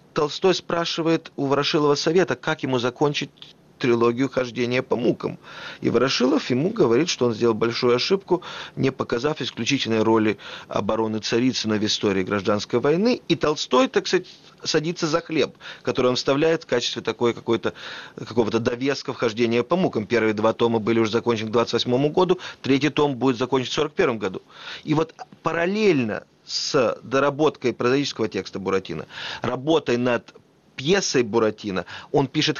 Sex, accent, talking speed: male, native, 145 wpm